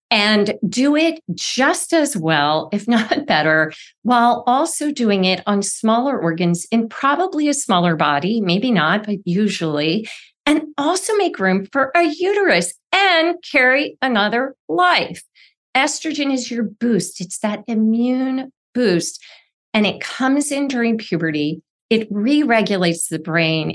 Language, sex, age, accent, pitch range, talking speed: English, female, 40-59, American, 180-255 Hz, 140 wpm